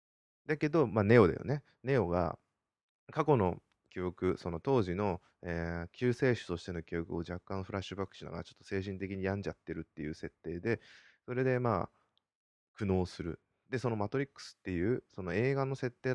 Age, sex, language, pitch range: 20-39, male, Japanese, 85-120 Hz